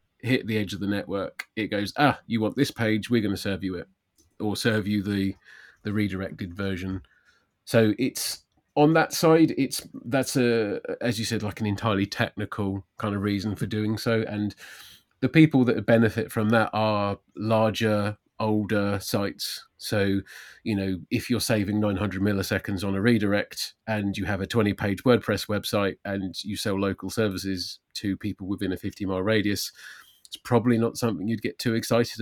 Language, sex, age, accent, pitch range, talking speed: English, male, 30-49, British, 100-115 Hz, 180 wpm